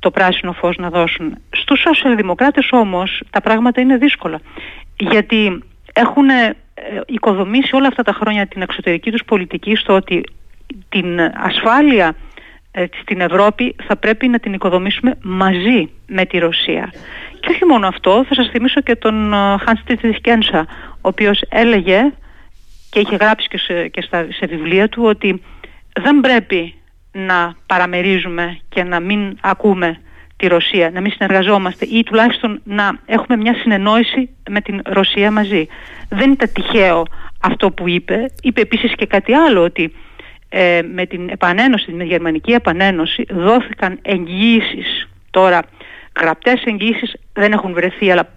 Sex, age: female, 40-59